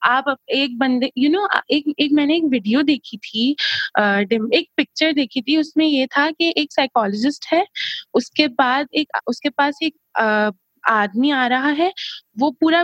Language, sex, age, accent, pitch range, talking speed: English, female, 20-39, Indian, 245-305 Hz, 130 wpm